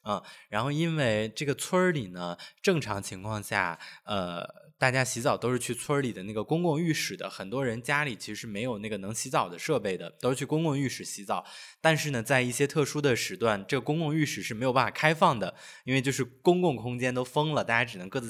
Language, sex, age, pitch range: Chinese, male, 20-39, 110-160 Hz